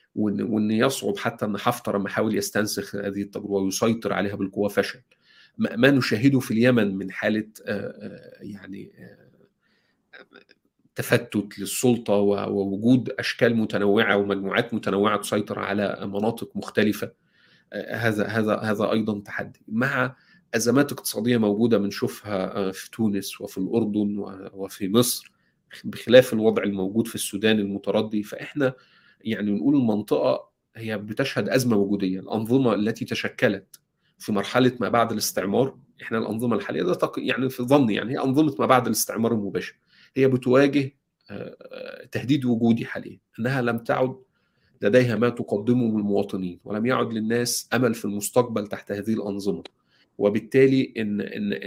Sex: male